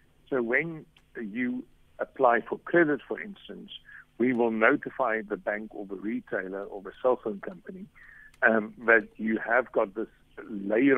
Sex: male